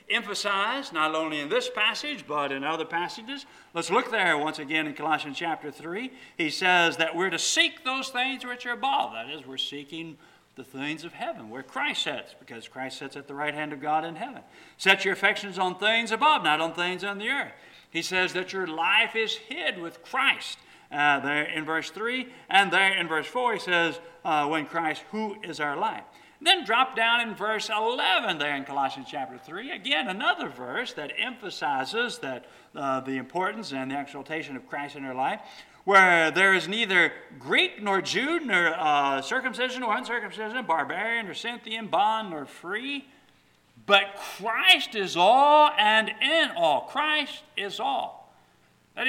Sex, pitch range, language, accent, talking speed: male, 155-255 Hz, English, American, 180 wpm